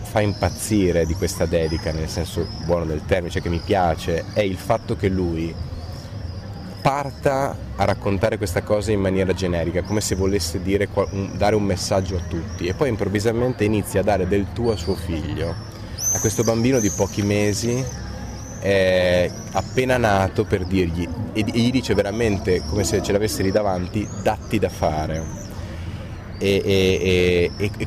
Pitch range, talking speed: 90-110 Hz, 150 wpm